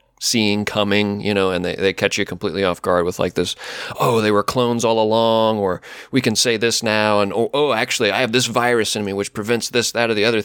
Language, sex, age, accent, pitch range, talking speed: English, male, 30-49, American, 95-115 Hz, 255 wpm